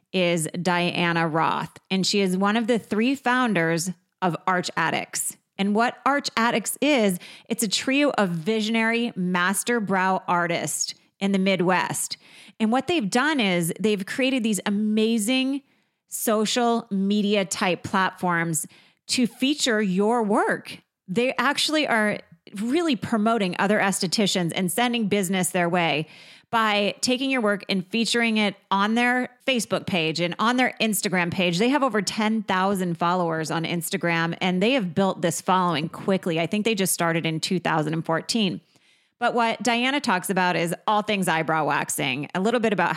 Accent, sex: American, female